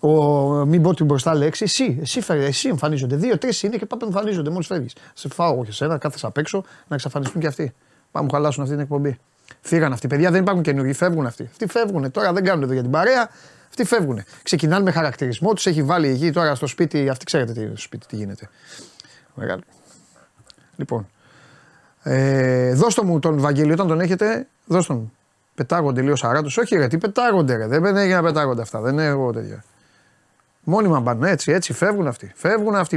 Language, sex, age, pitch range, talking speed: Greek, male, 30-49, 135-195 Hz, 190 wpm